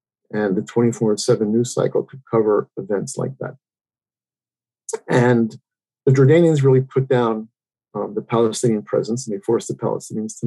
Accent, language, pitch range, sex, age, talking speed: American, English, 110-130 Hz, male, 50-69, 155 wpm